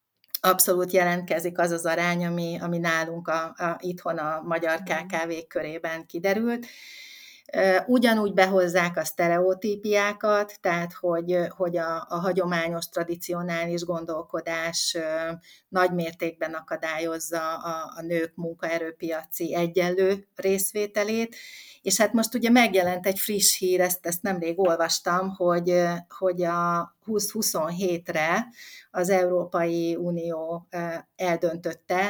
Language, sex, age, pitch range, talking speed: Hungarian, female, 30-49, 170-195 Hz, 105 wpm